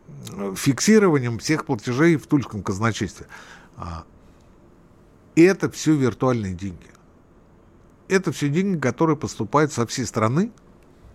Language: Russian